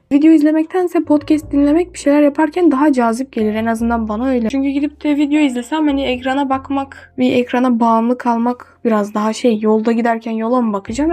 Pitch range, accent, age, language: 230-290 Hz, native, 10-29, Turkish